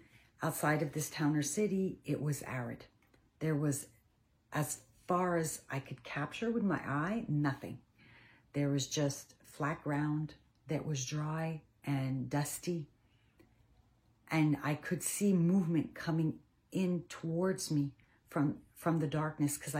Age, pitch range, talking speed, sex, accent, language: 40-59, 130-155 Hz, 135 wpm, female, American, English